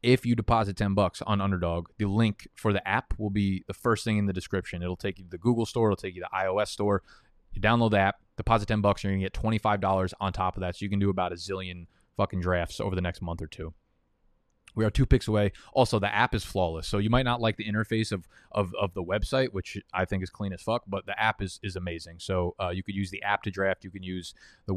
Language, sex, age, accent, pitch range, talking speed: English, male, 20-39, American, 95-110 Hz, 280 wpm